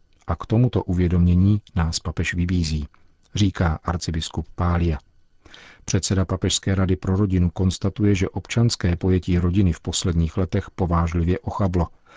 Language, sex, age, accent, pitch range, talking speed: Czech, male, 50-69, native, 85-100 Hz, 125 wpm